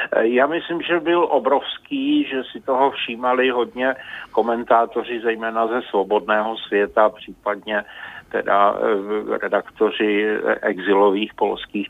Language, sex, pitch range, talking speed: Czech, male, 100-110 Hz, 100 wpm